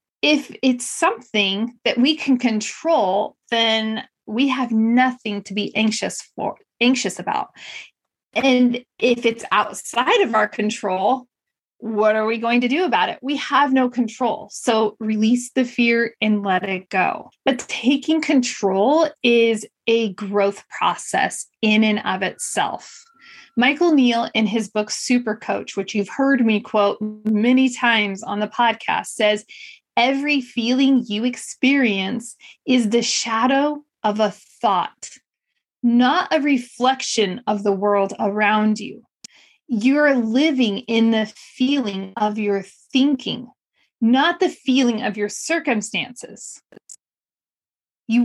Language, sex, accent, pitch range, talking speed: English, female, American, 215-265 Hz, 135 wpm